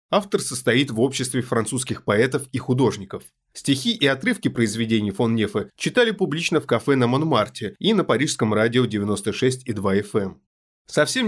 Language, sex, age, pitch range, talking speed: Russian, male, 30-49, 110-145 Hz, 150 wpm